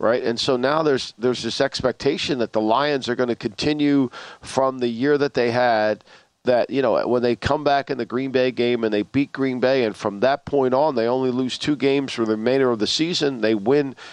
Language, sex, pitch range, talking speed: English, male, 120-145 Hz, 240 wpm